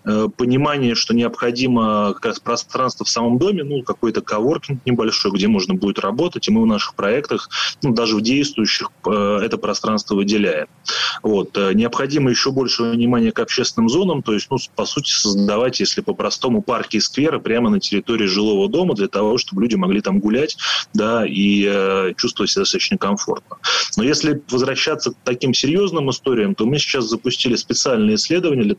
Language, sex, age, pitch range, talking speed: Russian, male, 20-39, 115-145 Hz, 170 wpm